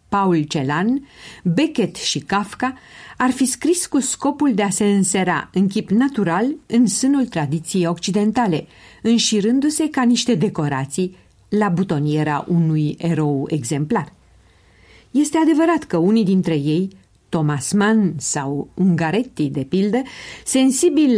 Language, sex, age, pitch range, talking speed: Romanian, female, 50-69, 165-240 Hz, 120 wpm